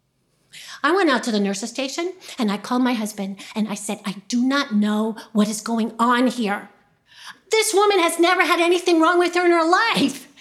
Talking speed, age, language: 210 wpm, 40-59, English